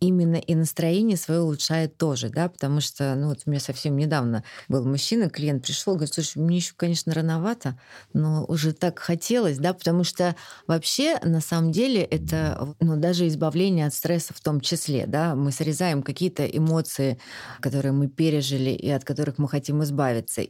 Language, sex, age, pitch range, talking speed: Russian, female, 20-39, 135-165 Hz, 175 wpm